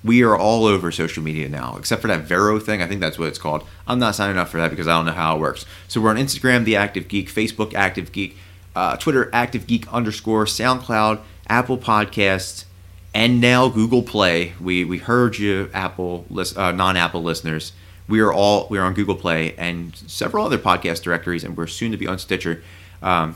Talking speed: 210 wpm